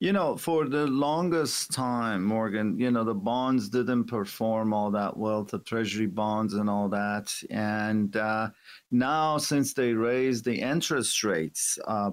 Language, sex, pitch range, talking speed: English, male, 110-130 Hz, 160 wpm